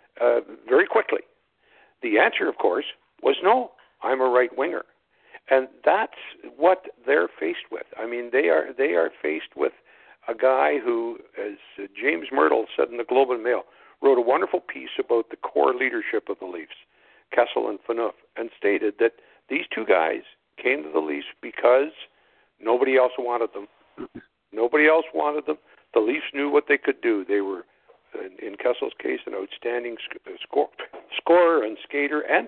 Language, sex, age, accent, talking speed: English, male, 60-79, American, 170 wpm